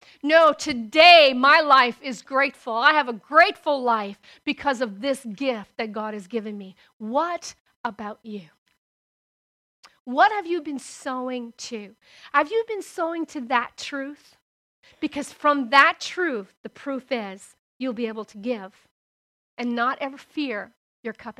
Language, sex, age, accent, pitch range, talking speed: English, female, 40-59, American, 225-285 Hz, 150 wpm